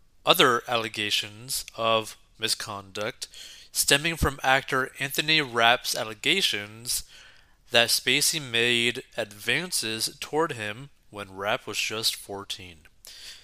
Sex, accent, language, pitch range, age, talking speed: male, American, English, 105-140 Hz, 30-49, 95 wpm